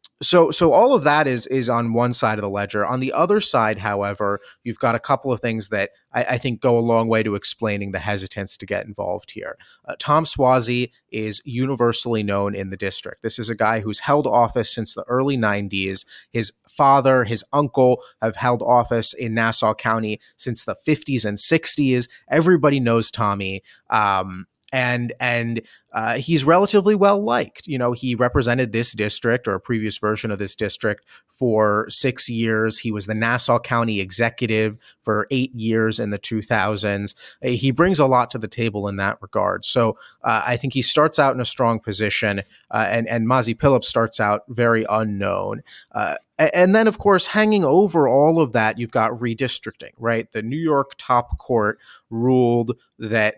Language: English